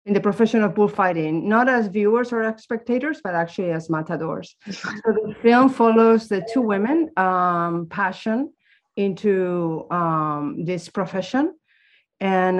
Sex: female